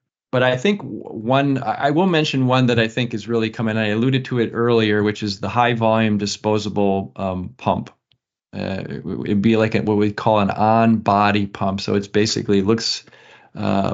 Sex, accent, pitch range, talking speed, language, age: male, American, 100-120 Hz, 195 wpm, English, 40-59